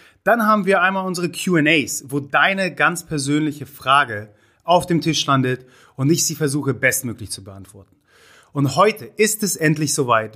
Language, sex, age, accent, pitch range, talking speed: German, male, 30-49, German, 125-175 Hz, 160 wpm